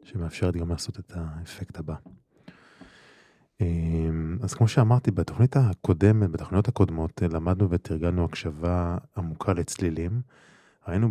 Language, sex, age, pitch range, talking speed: Hebrew, male, 20-39, 85-105 Hz, 105 wpm